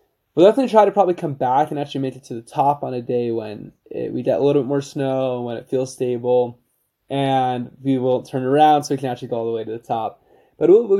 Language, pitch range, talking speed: English, 125-165 Hz, 275 wpm